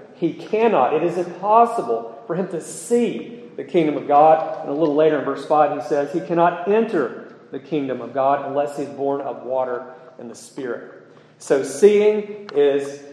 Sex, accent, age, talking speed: male, American, 40-59, 185 wpm